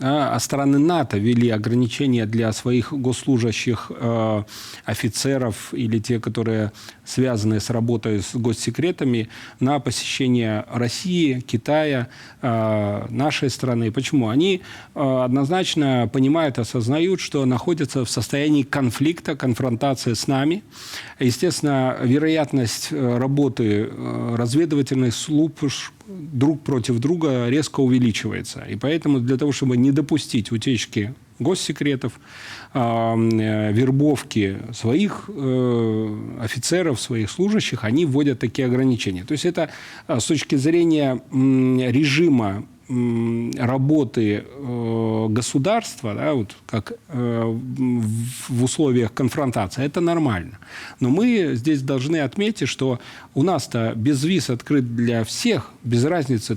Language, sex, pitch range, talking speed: Russian, male, 115-145 Hz, 110 wpm